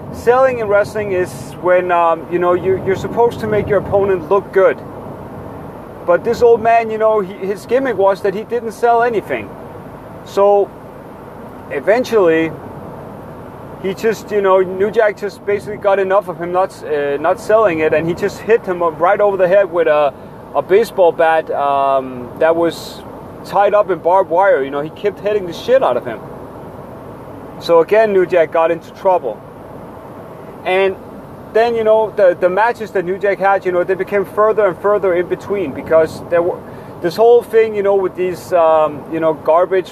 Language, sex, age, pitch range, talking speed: English, male, 30-49, 165-205 Hz, 185 wpm